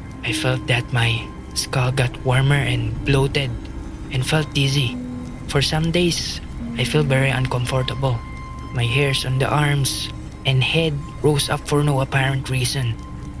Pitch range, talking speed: 125-140 Hz, 145 wpm